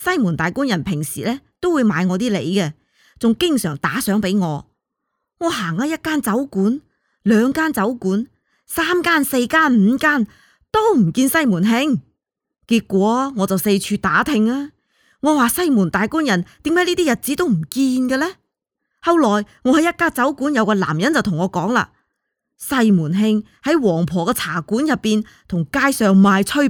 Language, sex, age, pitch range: Chinese, female, 20-39, 200-295 Hz